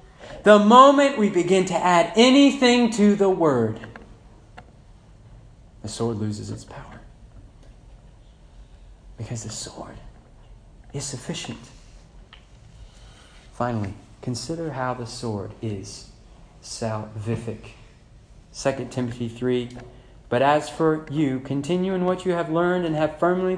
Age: 40-59